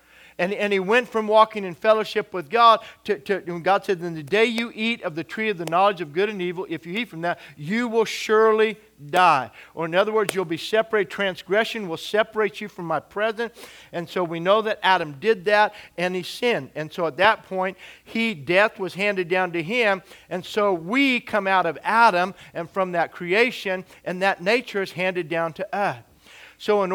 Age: 50-69